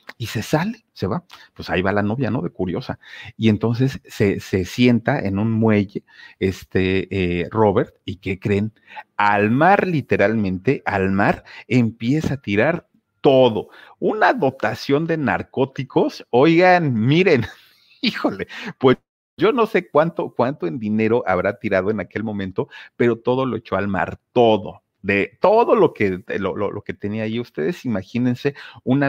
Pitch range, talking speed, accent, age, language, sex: 95-120 Hz, 160 wpm, Mexican, 40-59, Spanish, male